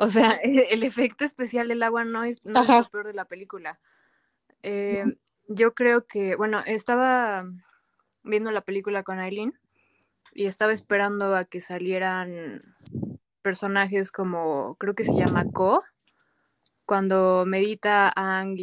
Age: 20-39